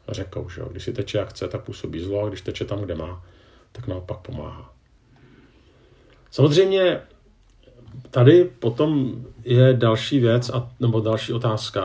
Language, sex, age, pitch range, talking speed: Czech, male, 50-69, 100-120 Hz, 150 wpm